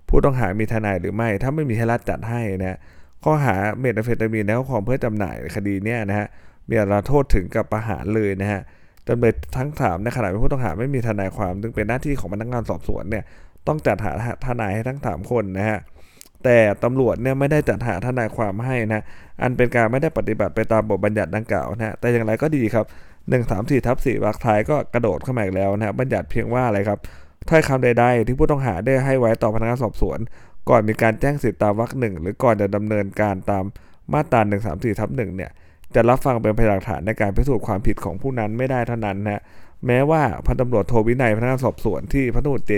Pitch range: 100-120 Hz